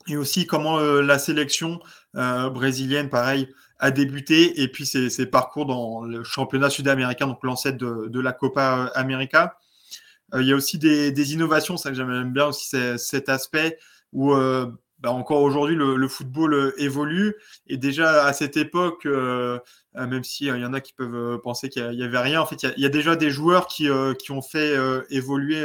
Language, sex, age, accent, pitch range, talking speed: French, male, 20-39, French, 130-150 Hz, 210 wpm